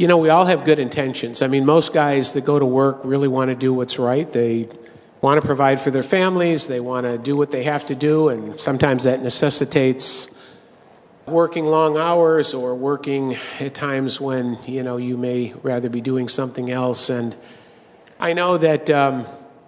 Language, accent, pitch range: English, American, 135-165 Hz